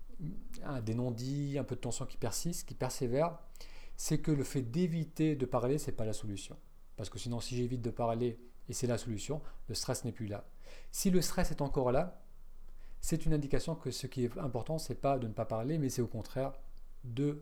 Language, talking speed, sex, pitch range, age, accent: French, 220 wpm, male, 100-140 Hz, 40-59, French